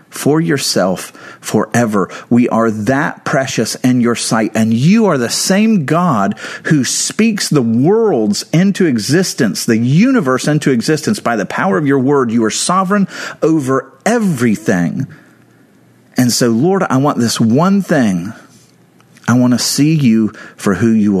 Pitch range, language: 120-175 Hz, English